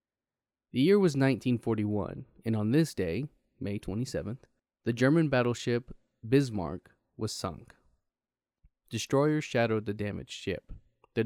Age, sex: 20-39, male